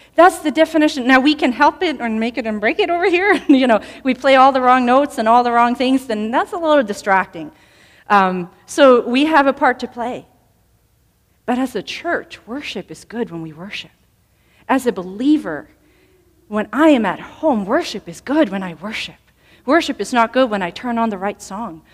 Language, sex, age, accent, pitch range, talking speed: English, female, 40-59, American, 195-270 Hz, 210 wpm